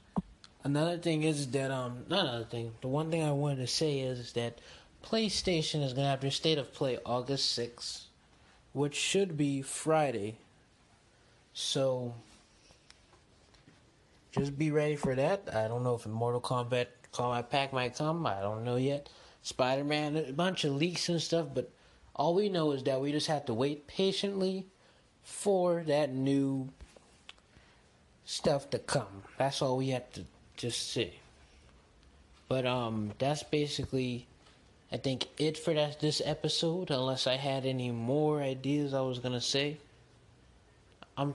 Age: 20-39